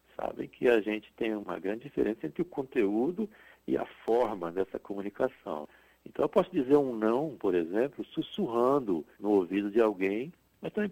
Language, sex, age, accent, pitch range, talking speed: Portuguese, male, 60-79, Brazilian, 105-140 Hz, 170 wpm